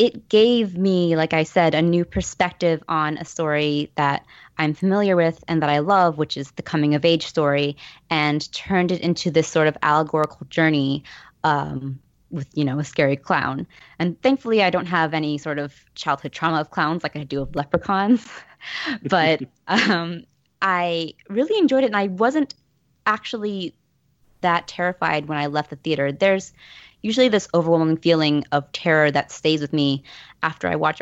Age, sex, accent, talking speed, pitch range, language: 20-39, female, American, 170 wpm, 150-180 Hz, English